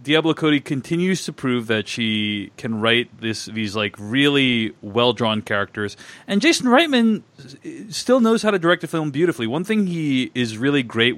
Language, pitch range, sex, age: English, 110-155 Hz, male, 30-49